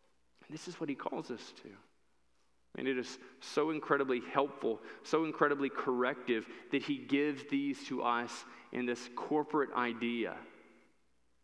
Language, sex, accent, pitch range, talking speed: English, male, American, 125-155 Hz, 135 wpm